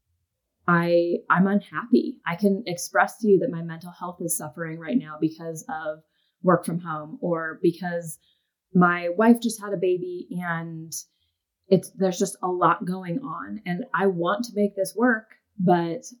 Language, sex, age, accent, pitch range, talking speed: English, female, 20-39, American, 160-190 Hz, 165 wpm